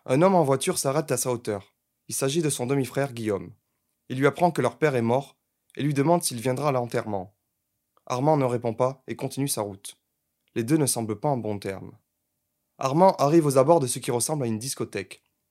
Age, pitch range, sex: 20-39, 120-155 Hz, male